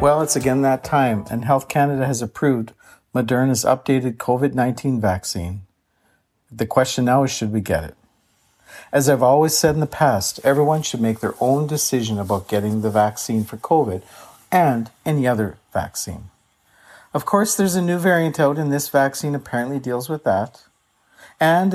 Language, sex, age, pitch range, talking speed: English, male, 50-69, 110-160 Hz, 165 wpm